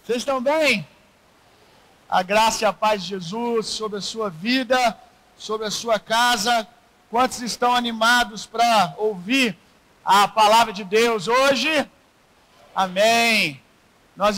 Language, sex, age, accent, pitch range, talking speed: Gujarati, male, 50-69, Brazilian, 185-225 Hz, 125 wpm